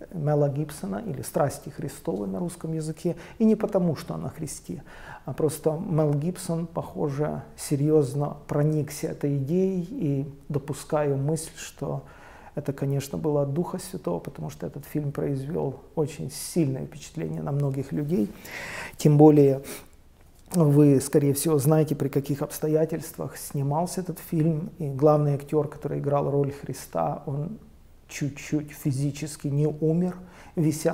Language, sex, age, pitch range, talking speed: Russian, male, 40-59, 140-160 Hz, 135 wpm